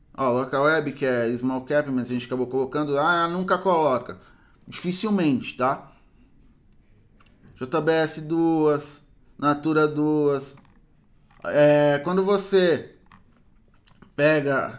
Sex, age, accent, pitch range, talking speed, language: male, 20-39, Brazilian, 135-165 Hz, 105 wpm, Portuguese